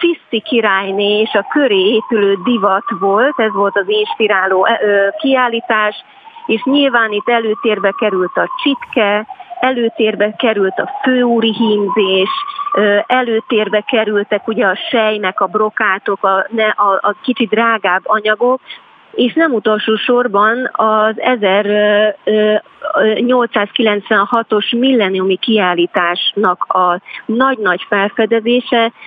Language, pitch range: Hungarian, 205-245 Hz